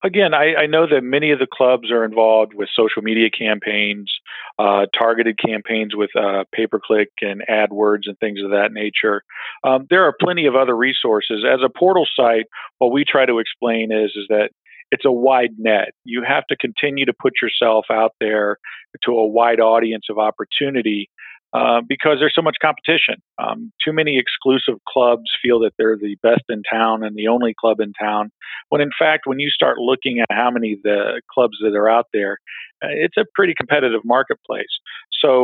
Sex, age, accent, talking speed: male, 40-59, American, 190 wpm